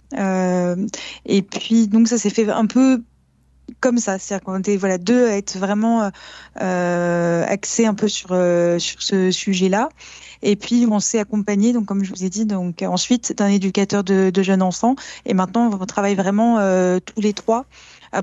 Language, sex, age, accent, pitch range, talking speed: French, female, 20-39, French, 185-220 Hz, 190 wpm